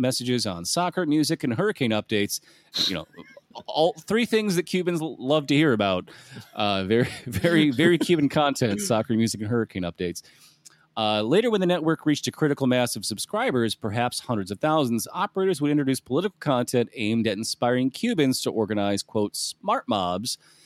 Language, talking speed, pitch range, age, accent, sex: English, 170 wpm, 105-160 Hz, 30-49, American, male